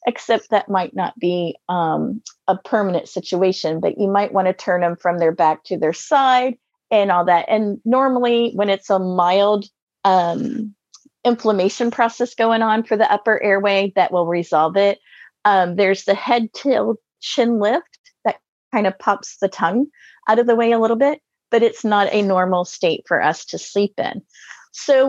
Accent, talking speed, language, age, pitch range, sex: American, 180 wpm, English, 30-49, 190-235 Hz, female